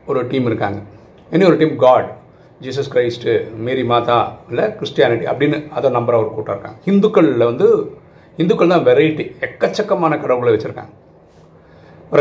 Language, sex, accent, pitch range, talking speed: Tamil, male, native, 105-150 Hz, 130 wpm